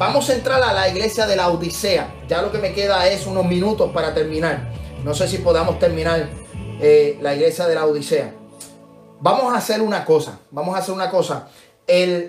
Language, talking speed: Spanish, 200 wpm